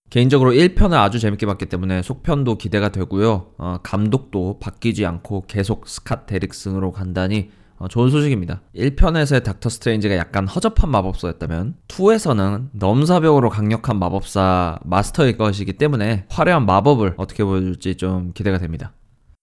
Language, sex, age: Korean, male, 20-39